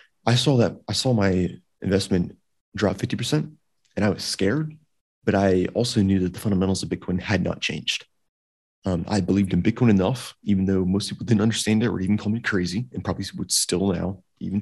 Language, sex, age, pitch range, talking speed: English, male, 30-49, 90-105 Hz, 200 wpm